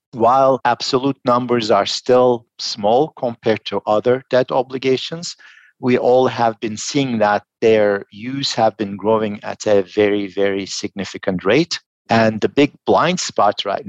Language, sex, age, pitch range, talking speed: English, male, 50-69, 105-120 Hz, 145 wpm